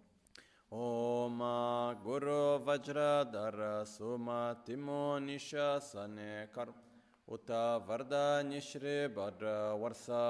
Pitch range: 105-140 Hz